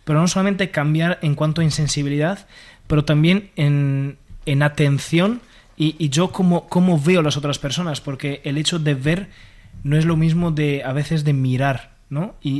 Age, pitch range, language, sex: 20-39, 145-165 Hz, Spanish, male